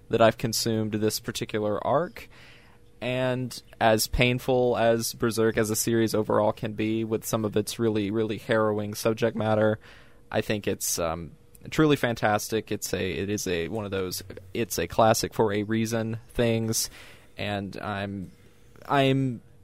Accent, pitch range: American, 110-125 Hz